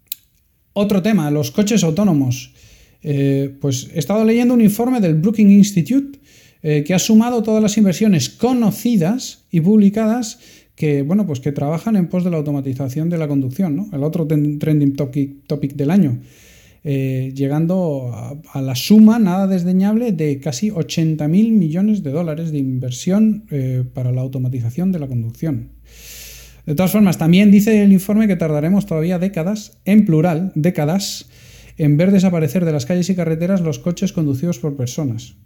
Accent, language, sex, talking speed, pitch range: Spanish, Spanish, male, 165 wpm, 140-190 Hz